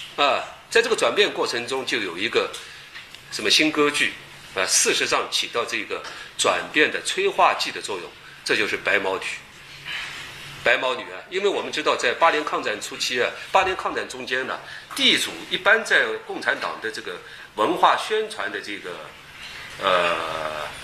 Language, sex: Chinese, male